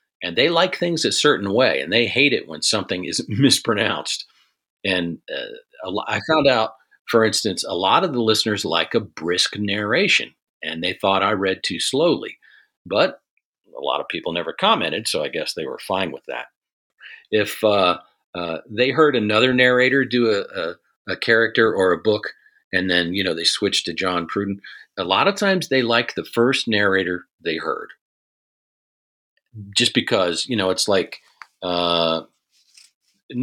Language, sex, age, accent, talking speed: English, male, 50-69, American, 170 wpm